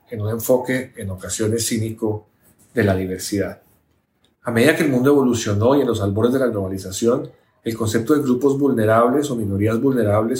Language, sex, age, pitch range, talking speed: Spanish, male, 40-59, 105-125 Hz, 175 wpm